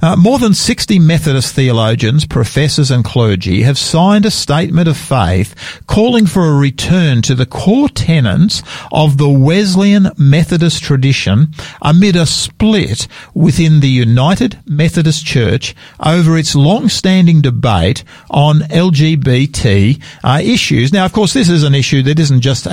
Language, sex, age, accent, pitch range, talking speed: English, male, 50-69, Australian, 120-170 Hz, 145 wpm